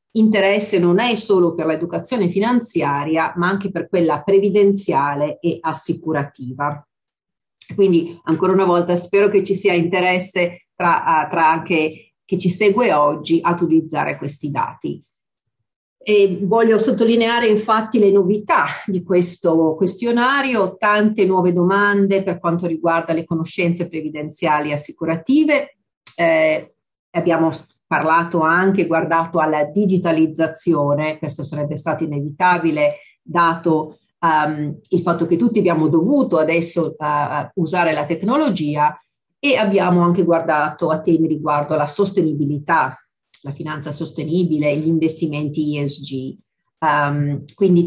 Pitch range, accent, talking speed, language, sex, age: 155-195 Hz, native, 120 wpm, Italian, female, 50-69